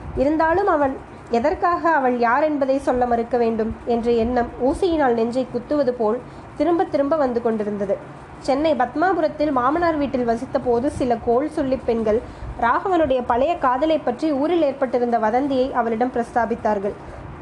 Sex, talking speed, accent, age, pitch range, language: female, 130 wpm, native, 20-39, 240-295 Hz, Tamil